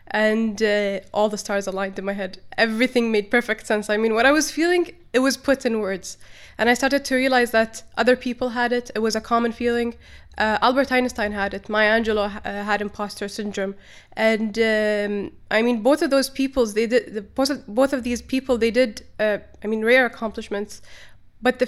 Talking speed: 210 wpm